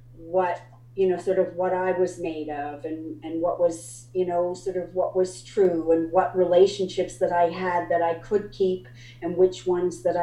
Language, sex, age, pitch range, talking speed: English, female, 40-59, 125-190 Hz, 205 wpm